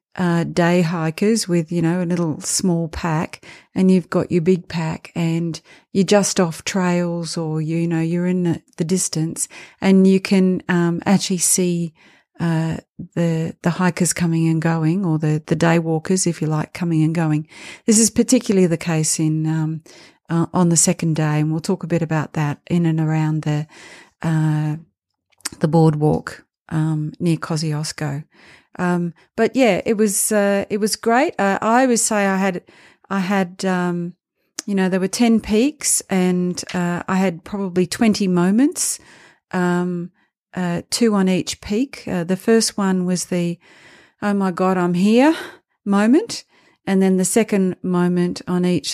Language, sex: English, female